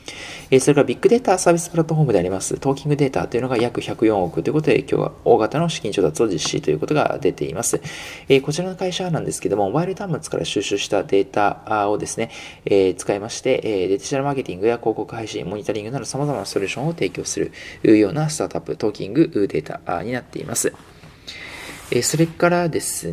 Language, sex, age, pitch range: Japanese, male, 20-39, 115-160 Hz